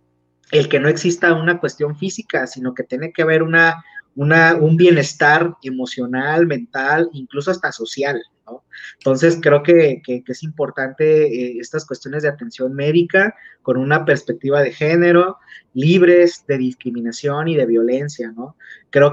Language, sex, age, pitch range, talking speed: Spanish, male, 30-49, 130-160 Hz, 150 wpm